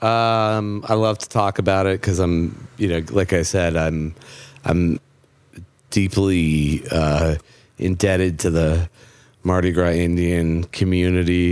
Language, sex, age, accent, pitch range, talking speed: French, male, 30-49, American, 85-100 Hz, 130 wpm